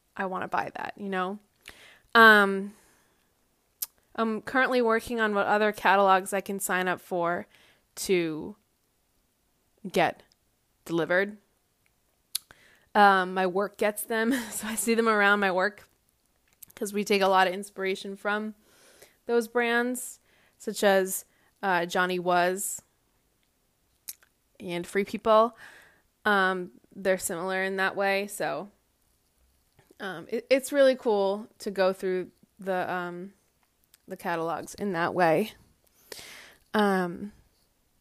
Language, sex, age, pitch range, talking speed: English, female, 20-39, 185-230 Hz, 120 wpm